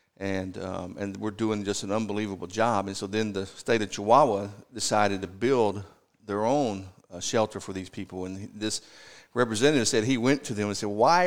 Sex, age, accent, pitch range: male, 50-69, American, 95-120 Hz